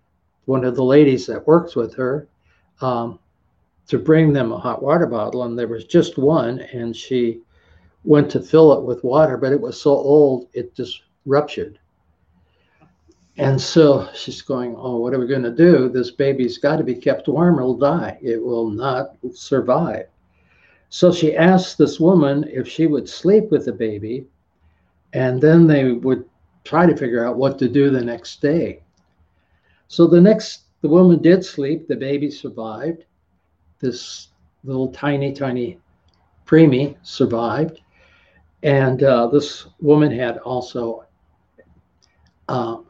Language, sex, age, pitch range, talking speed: English, male, 60-79, 115-150 Hz, 155 wpm